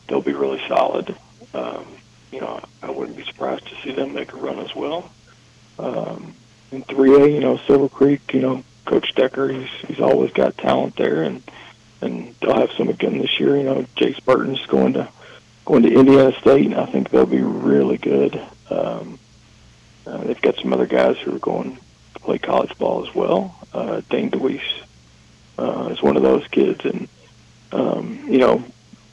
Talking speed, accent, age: 185 wpm, American, 40-59